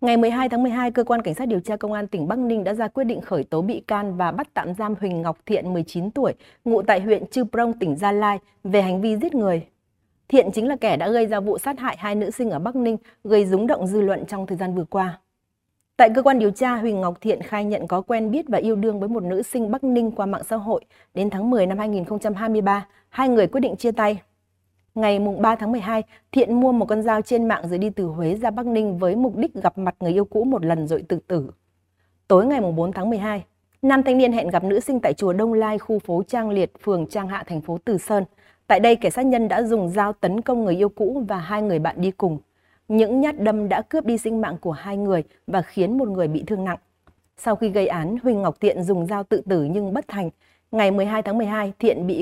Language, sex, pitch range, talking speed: Vietnamese, female, 185-230 Hz, 260 wpm